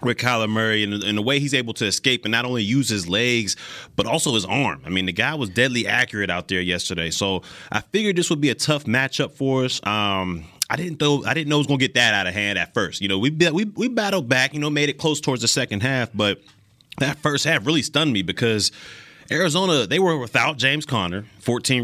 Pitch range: 110-145 Hz